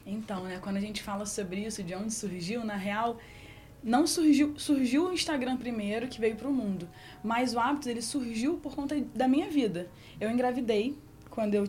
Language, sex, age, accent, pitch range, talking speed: Portuguese, female, 20-39, Brazilian, 195-265 Hz, 190 wpm